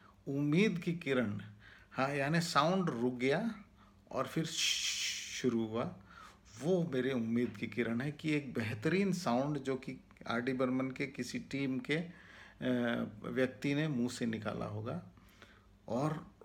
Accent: native